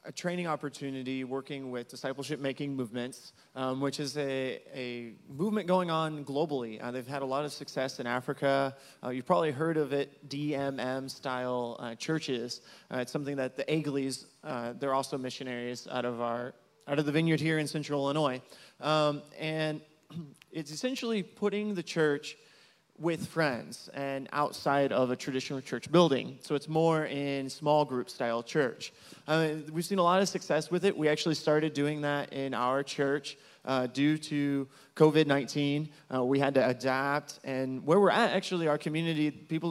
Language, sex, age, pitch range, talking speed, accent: English, male, 30-49, 135-160 Hz, 170 wpm, American